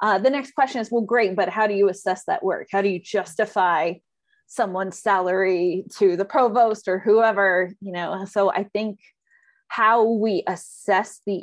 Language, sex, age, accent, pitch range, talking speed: English, female, 30-49, American, 190-225 Hz, 180 wpm